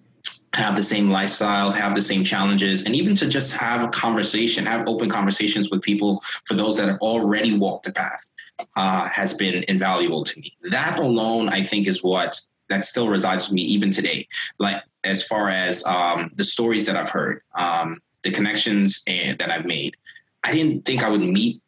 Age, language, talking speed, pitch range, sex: 20-39, English, 190 wpm, 95-115 Hz, male